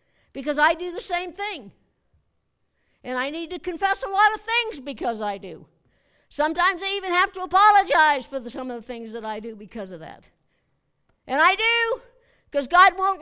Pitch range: 280-380 Hz